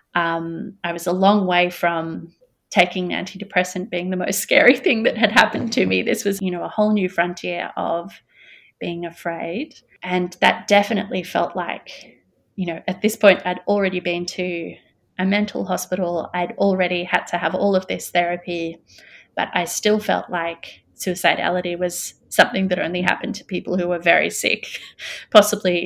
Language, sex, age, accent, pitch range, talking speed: English, female, 30-49, Australian, 170-205 Hz, 170 wpm